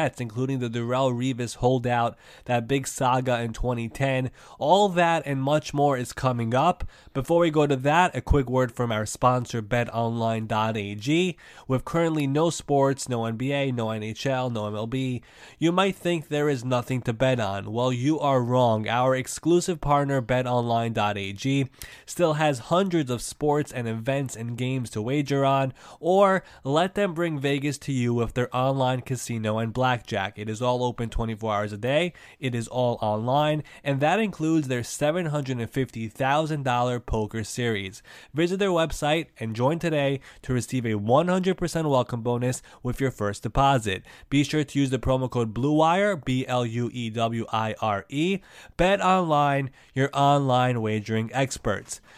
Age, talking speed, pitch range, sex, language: 20-39, 150 wpm, 120-150 Hz, male, English